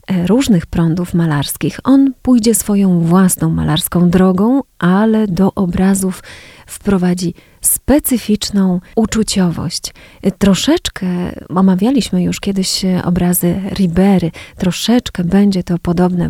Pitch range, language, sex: 175-200 Hz, Polish, female